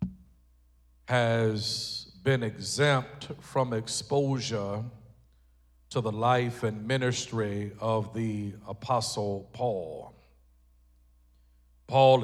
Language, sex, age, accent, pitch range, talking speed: English, male, 50-69, American, 105-135 Hz, 75 wpm